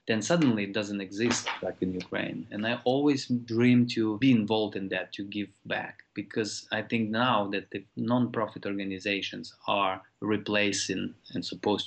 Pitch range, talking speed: 95-115 Hz, 160 wpm